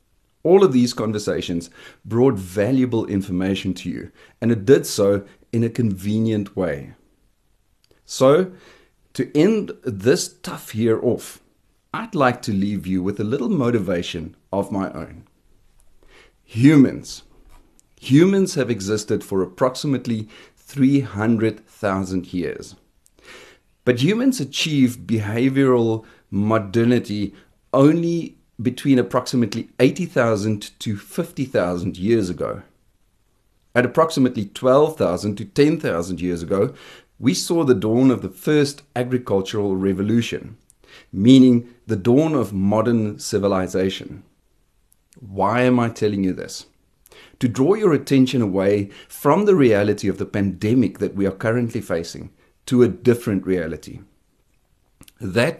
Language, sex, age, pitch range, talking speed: English, male, 40-59, 100-130 Hz, 115 wpm